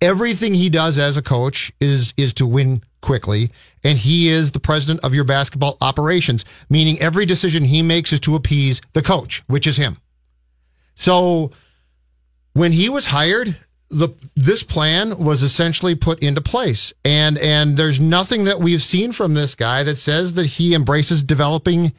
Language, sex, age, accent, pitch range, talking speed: English, male, 40-59, American, 135-170 Hz, 170 wpm